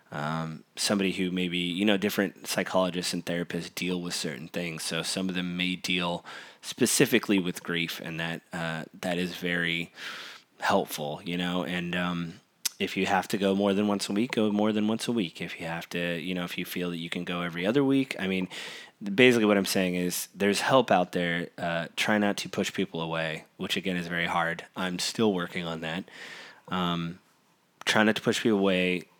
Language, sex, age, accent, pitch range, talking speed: English, male, 20-39, American, 85-95 Hz, 210 wpm